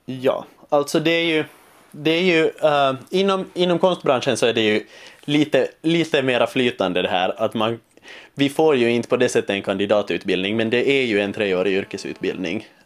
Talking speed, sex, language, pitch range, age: 185 wpm, male, Swedish, 110-140 Hz, 20-39